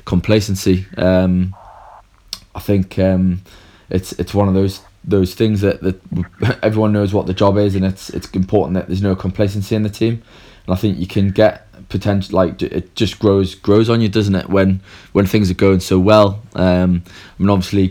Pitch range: 90-100 Hz